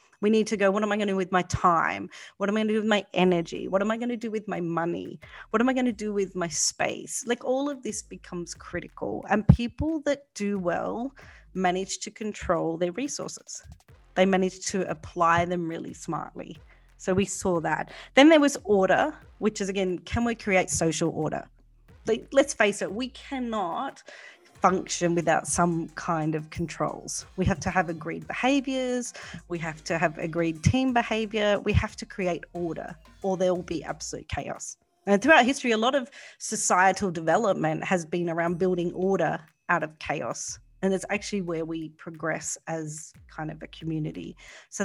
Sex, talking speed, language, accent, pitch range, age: female, 190 wpm, English, Australian, 175-240 Hz, 30-49